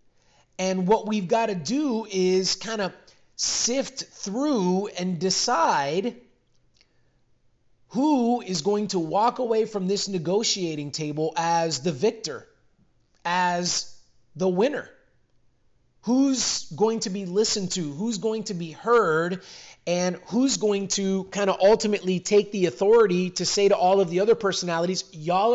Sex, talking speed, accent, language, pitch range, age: male, 140 wpm, American, English, 170-210 Hz, 30-49